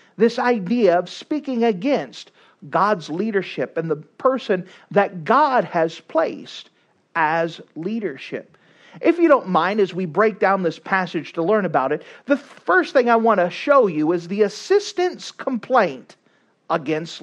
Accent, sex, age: American, male, 40-59